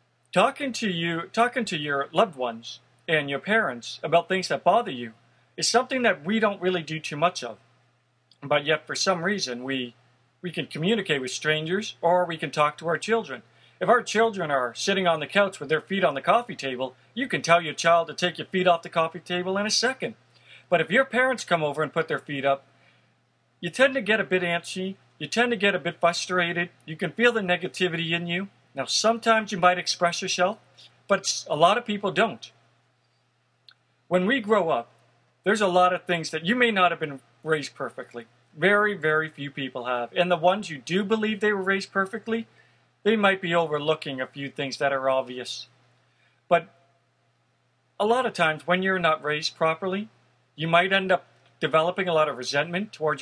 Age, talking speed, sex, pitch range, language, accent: 40-59, 205 wpm, male, 150-195 Hz, English, American